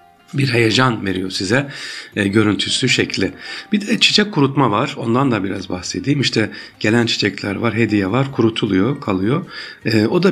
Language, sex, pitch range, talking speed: Turkish, male, 95-130 Hz, 155 wpm